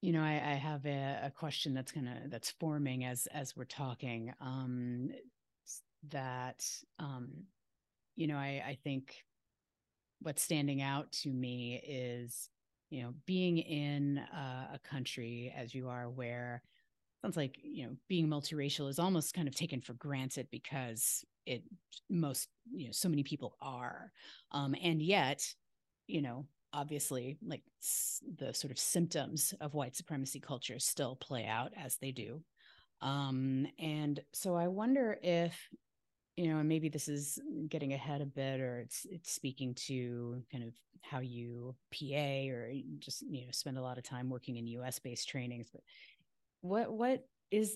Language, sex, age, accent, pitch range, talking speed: English, female, 30-49, American, 125-155 Hz, 165 wpm